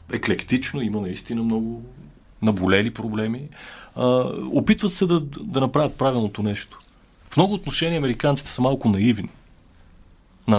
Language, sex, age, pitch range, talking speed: Bulgarian, male, 30-49, 100-125 Hz, 125 wpm